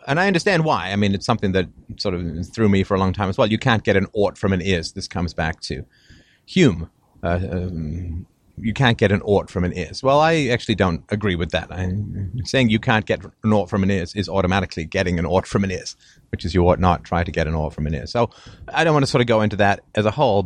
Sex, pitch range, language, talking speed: male, 90-125 Hz, English, 275 wpm